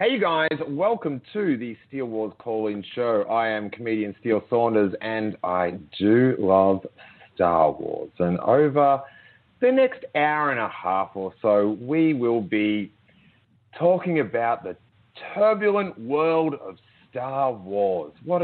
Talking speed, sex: 140 wpm, male